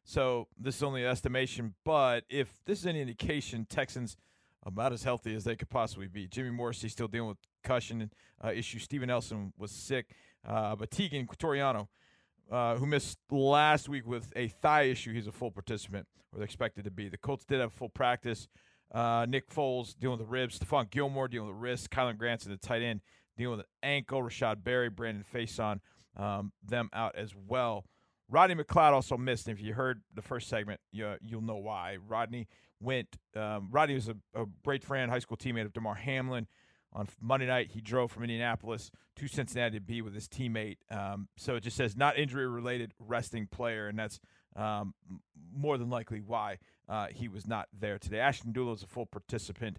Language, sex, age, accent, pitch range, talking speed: English, male, 40-59, American, 105-130 Hz, 200 wpm